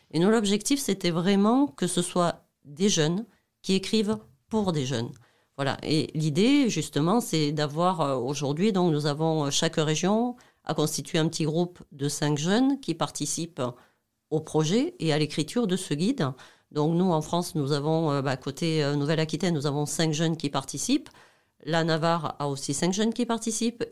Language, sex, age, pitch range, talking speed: French, female, 40-59, 150-200 Hz, 175 wpm